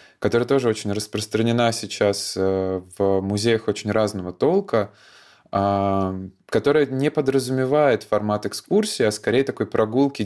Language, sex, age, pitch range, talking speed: Russian, male, 20-39, 100-120 Hz, 110 wpm